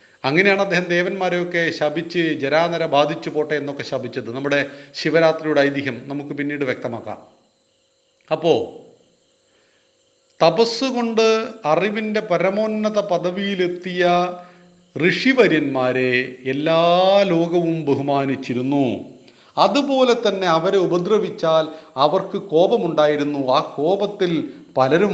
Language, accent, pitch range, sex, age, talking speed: Hindi, native, 145-195 Hz, male, 40-59, 45 wpm